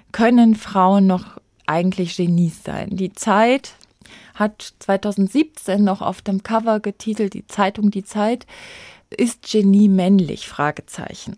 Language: German